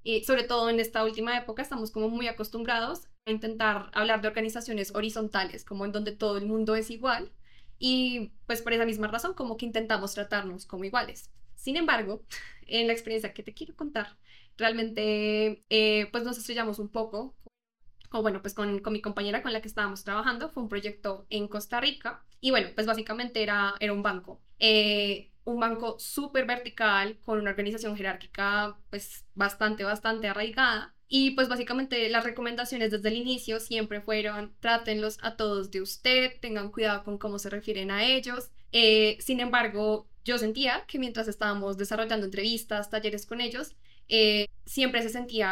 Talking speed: 175 wpm